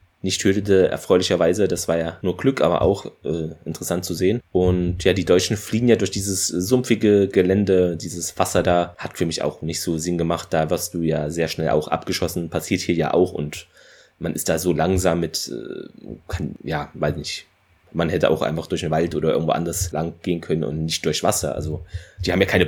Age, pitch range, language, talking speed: 20-39, 85-100 Hz, German, 210 wpm